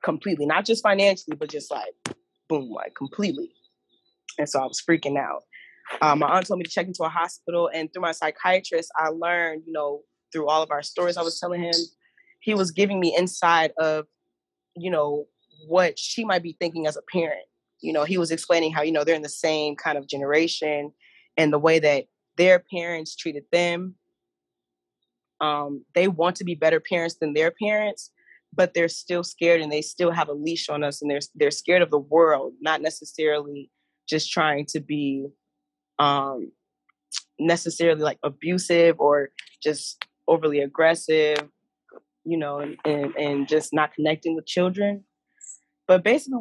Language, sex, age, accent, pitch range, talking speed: English, female, 20-39, American, 150-175 Hz, 175 wpm